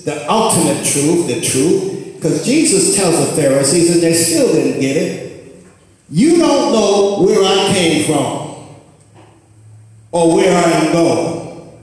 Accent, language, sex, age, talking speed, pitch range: American, English, male, 60-79, 140 wpm, 155-195 Hz